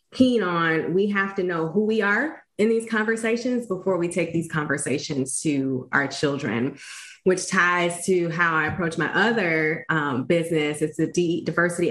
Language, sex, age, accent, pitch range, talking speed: English, female, 20-39, American, 155-195 Hz, 165 wpm